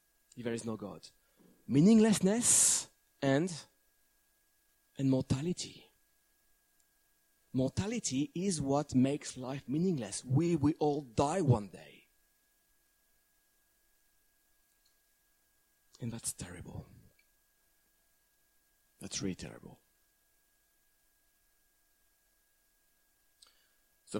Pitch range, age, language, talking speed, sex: 115-150 Hz, 40-59, English, 65 wpm, male